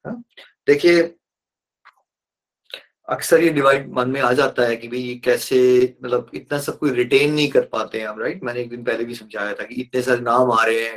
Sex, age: male, 30-49